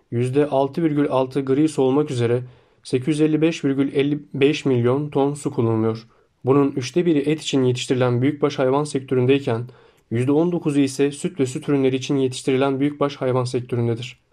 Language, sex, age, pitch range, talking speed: Turkish, male, 30-49, 125-150 Hz, 125 wpm